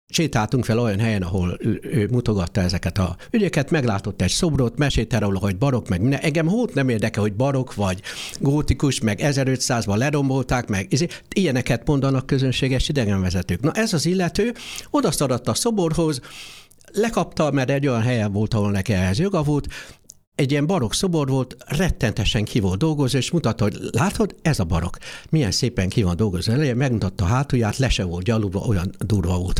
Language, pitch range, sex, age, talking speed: Hungarian, 105-155 Hz, male, 60-79, 165 wpm